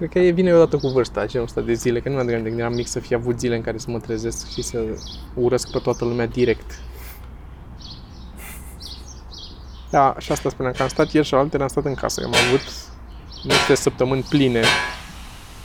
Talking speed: 210 wpm